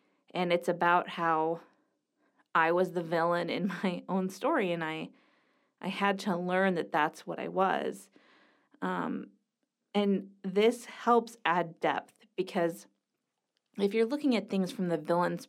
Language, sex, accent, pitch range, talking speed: English, female, American, 180-235 Hz, 145 wpm